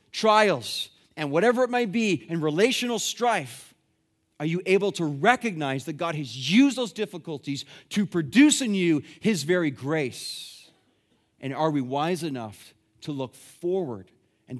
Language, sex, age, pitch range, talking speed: English, male, 30-49, 135-180 Hz, 150 wpm